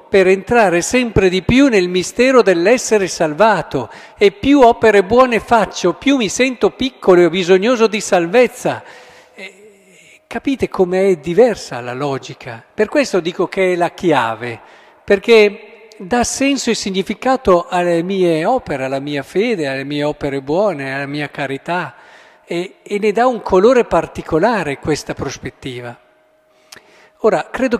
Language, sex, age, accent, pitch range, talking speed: Italian, male, 50-69, native, 145-210 Hz, 140 wpm